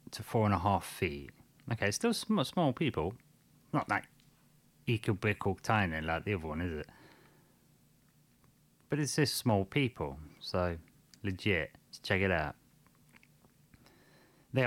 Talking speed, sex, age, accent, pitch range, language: 145 wpm, male, 30-49, British, 90-115 Hz, English